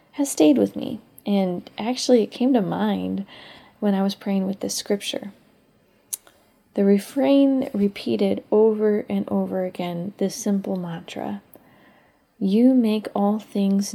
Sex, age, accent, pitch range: female, 20-39, American, 185-220 Hz